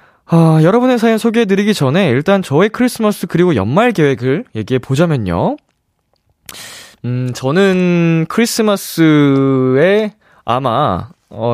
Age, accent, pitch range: 20-39, native, 115-180 Hz